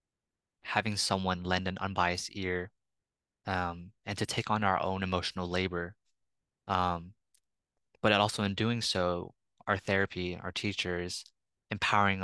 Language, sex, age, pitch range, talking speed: English, male, 20-39, 90-105 Hz, 125 wpm